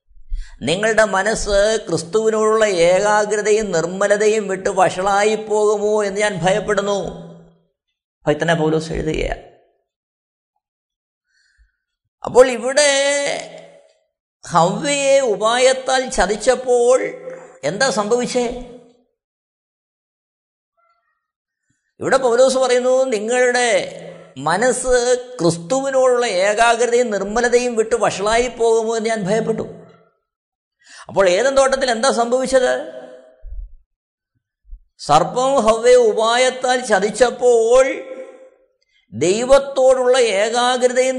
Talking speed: 65 wpm